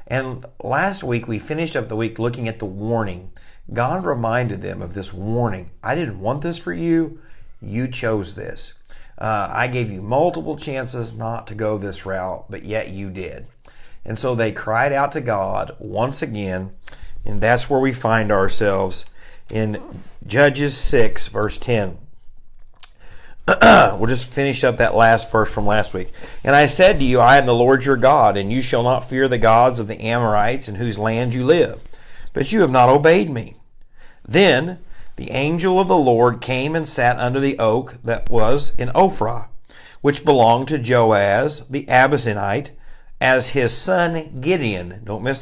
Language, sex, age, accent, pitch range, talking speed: English, male, 50-69, American, 110-140 Hz, 175 wpm